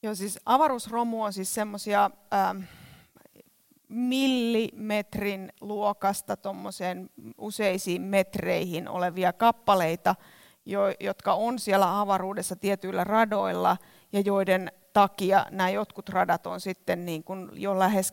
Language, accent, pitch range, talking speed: Finnish, native, 180-210 Hz, 105 wpm